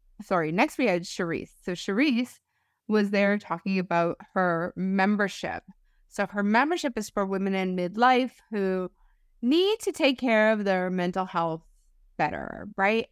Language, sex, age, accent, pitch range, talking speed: English, female, 30-49, American, 175-235 Hz, 145 wpm